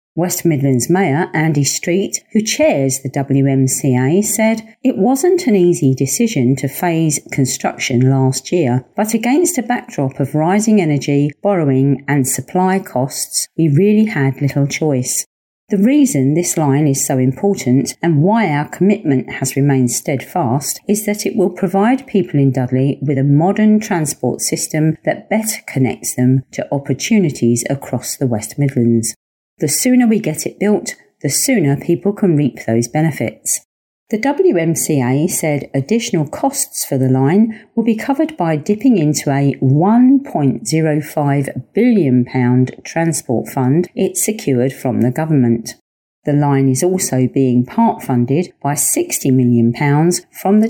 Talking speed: 145 wpm